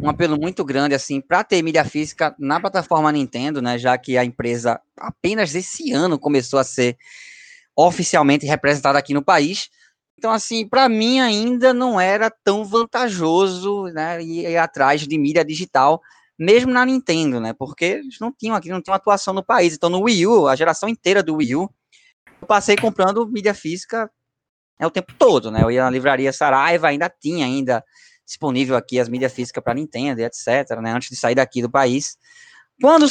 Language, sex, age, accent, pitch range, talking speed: Portuguese, male, 20-39, Brazilian, 140-190 Hz, 185 wpm